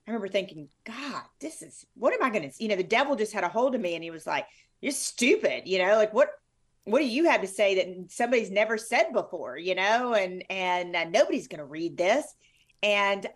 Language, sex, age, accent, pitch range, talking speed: English, female, 30-49, American, 185-255 Hz, 240 wpm